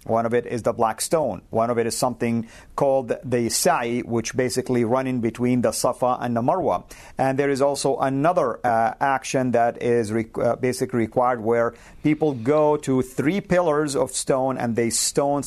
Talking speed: 190 wpm